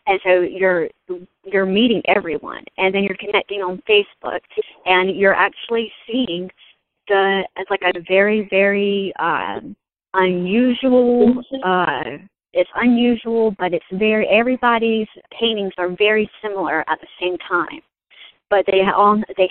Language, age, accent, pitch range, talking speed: English, 30-49, American, 180-210 Hz, 130 wpm